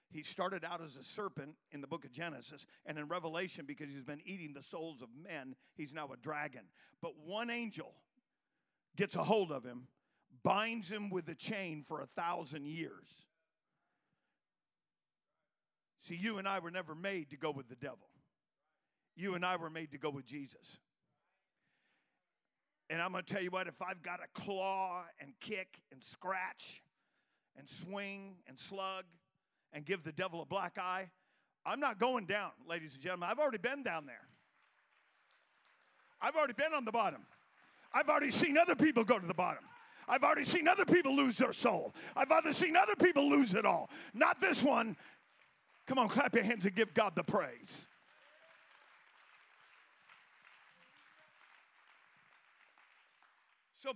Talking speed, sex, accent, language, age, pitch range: 165 wpm, male, American, English, 50-69, 160-245 Hz